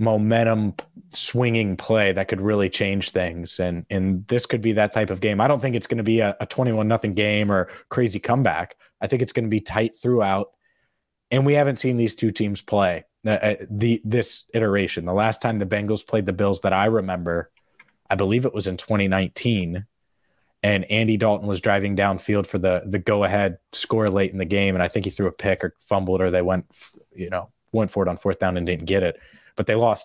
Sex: male